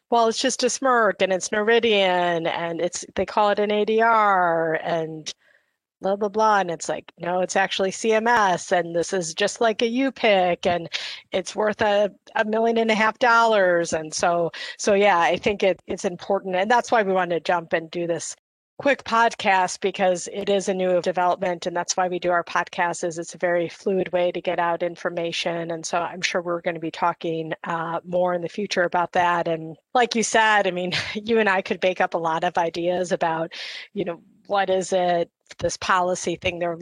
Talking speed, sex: 210 wpm, female